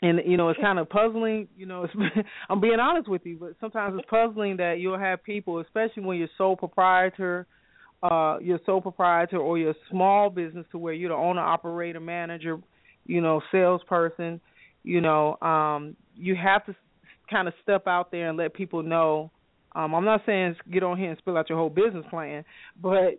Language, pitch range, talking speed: English, 165-190 Hz, 200 wpm